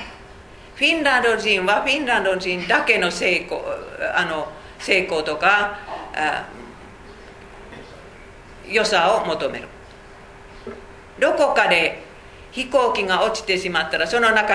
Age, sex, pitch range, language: 50-69, female, 180-255 Hz, Japanese